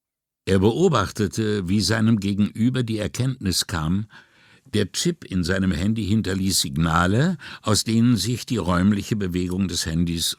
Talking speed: 135 wpm